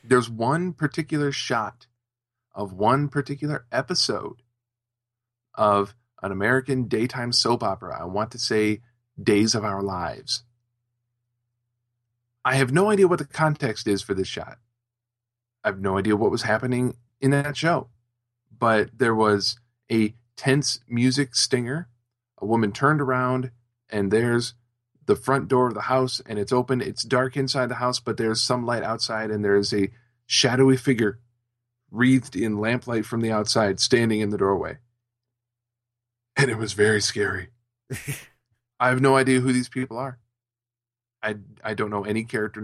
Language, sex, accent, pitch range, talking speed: English, male, American, 115-130 Hz, 155 wpm